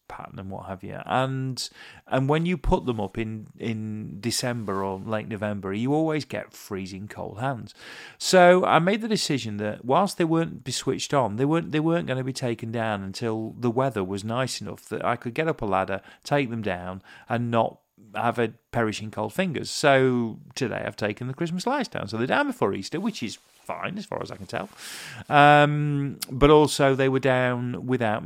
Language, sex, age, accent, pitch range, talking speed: English, male, 40-59, British, 105-150 Hz, 205 wpm